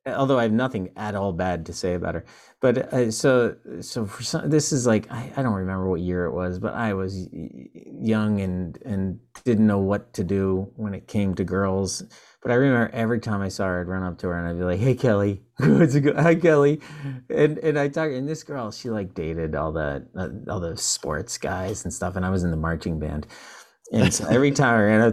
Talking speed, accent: 240 wpm, American